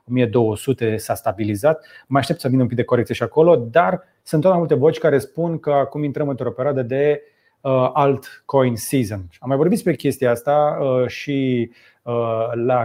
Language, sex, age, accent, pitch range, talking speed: Romanian, male, 30-49, native, 120-155 Hz, 170 wpm